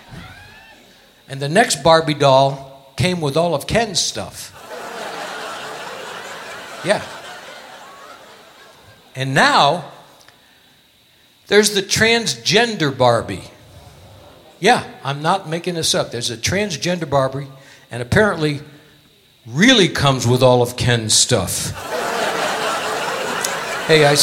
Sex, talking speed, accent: male, 95 wpm, American